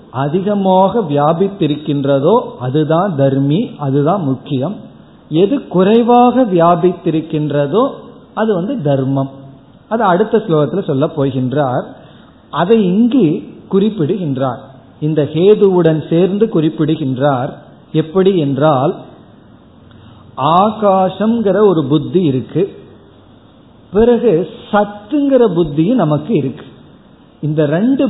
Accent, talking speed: native, 80 wpm